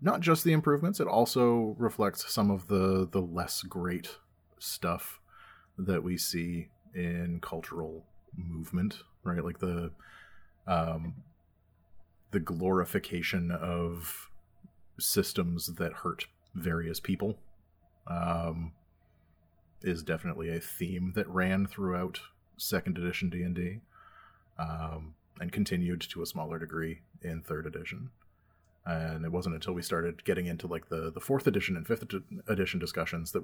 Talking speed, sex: 125 wpm, male